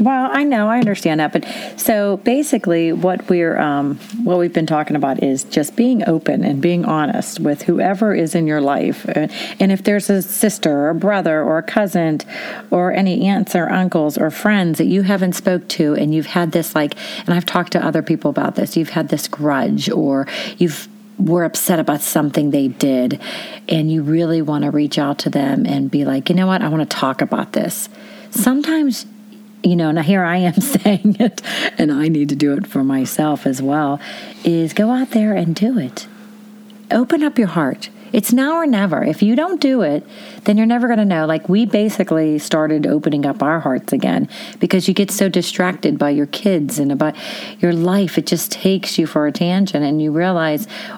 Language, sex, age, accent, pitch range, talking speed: English, female, 40-59, American, 155-210 Hz, 205 wpm